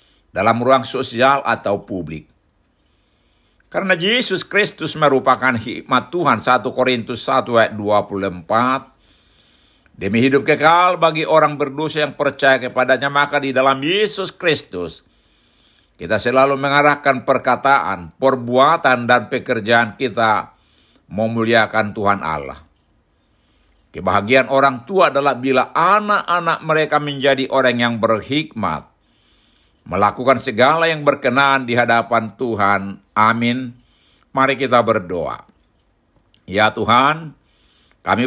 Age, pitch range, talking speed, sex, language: 60-79, 110-140 Hz, 105 wpm, male, Indonesian